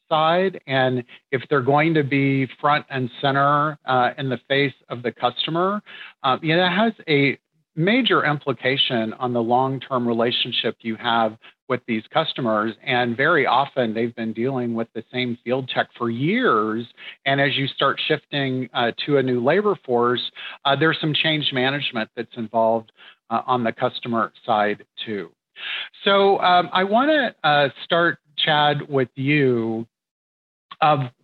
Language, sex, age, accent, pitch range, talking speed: English, male, 50-69, American, 125-155 Hz, 160 wpm